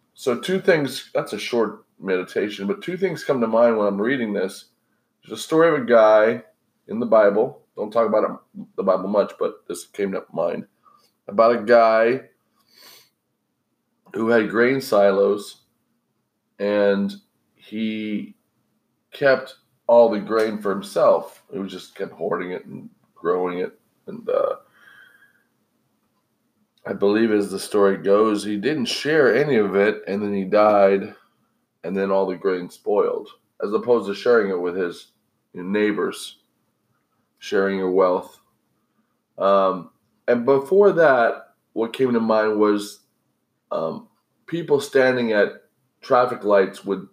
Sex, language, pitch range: male, English, 100-125 Hz